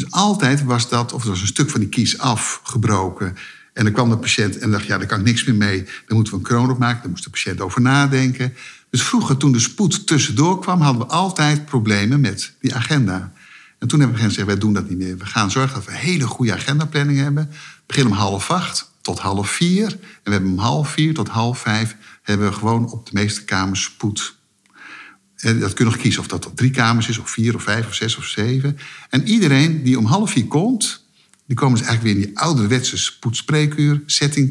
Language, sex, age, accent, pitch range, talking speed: Dutch, male, 50-69, Dutch, 105-140 Hz, 230 wpm